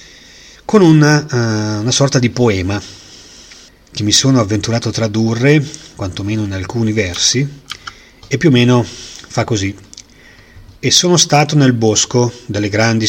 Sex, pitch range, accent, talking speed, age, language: male, 100-125 Hz, native, 130 wpm, 40-59, Italian